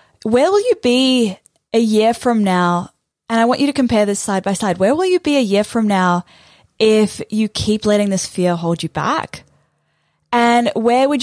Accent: Australian